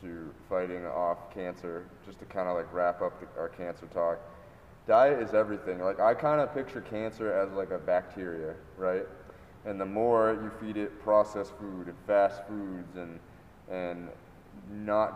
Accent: American